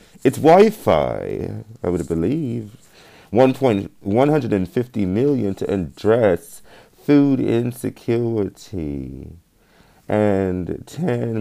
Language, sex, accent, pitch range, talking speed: English, male, American, 80-120 Hz, 95 wpm